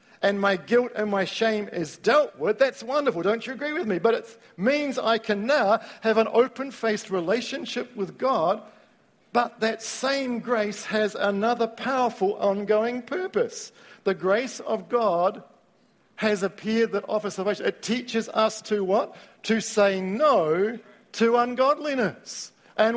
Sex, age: male, 50-69